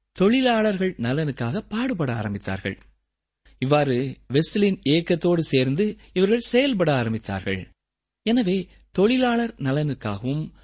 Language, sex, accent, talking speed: Tamil, male, native, 80 wpm